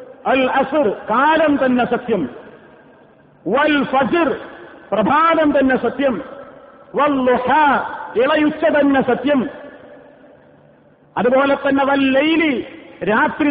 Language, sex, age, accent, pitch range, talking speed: Malayalam, male, 50-69, native, 210-290 Hz, 60 wpm